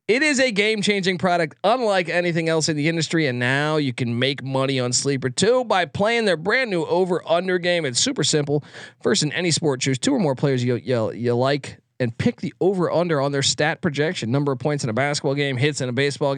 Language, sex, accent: English, male, American